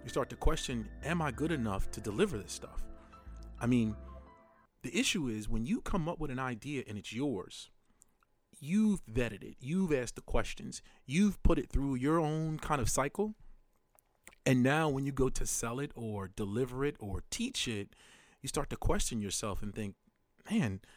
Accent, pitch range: American, 110-155 Hz